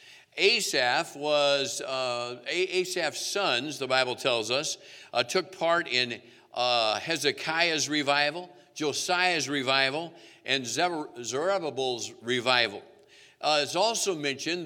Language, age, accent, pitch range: English, 50-69, American, 130-165 Hz